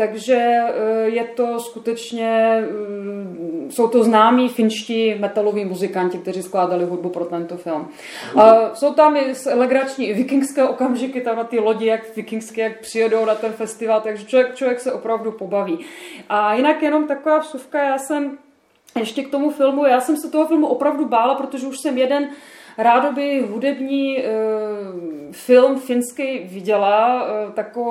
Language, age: Czech, 20-39